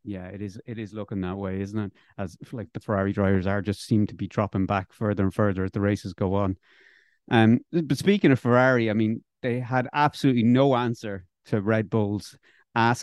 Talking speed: 210 wpm